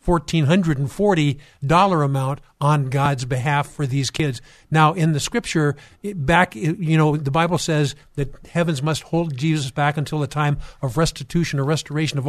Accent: American